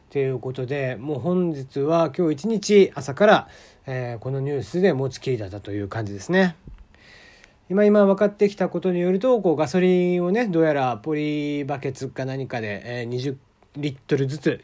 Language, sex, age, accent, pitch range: Japanese, male, 40-59, native, 125-170 Hz